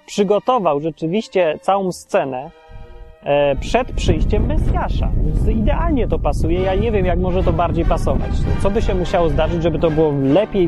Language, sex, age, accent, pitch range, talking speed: Polish, male, 30-49, native, 140-180 Hz, 150 wpm